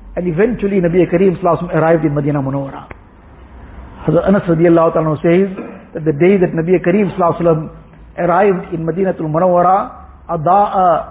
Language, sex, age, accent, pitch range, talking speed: English, male, 50-69, Indian, 155-195 Hz, 120 wpm